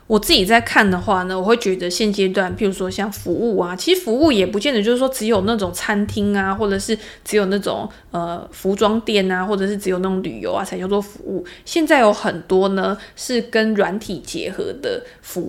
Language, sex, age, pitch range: Chinese, female, 20-39, 190-225 Hz